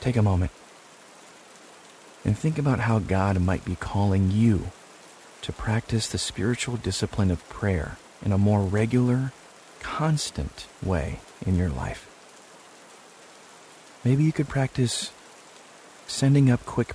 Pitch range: 95-120 Hz